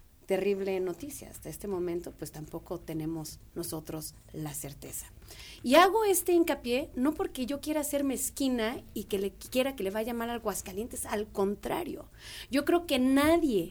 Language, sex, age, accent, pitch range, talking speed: Spanish, female, 40-59, Mexican, 200-300 Hz, 160 wpm